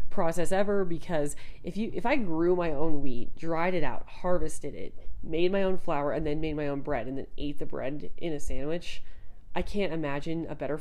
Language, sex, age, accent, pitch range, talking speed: English, female, 30-49, American, 150-180 Hz, 215 wpm